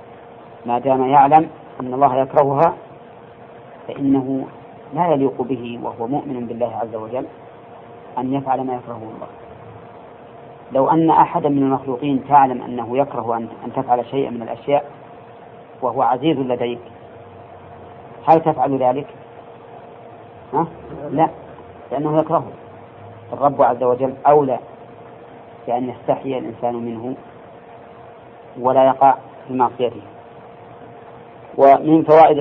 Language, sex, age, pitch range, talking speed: Arabic, female, 40-59, 120-145 Hz, 105 wpm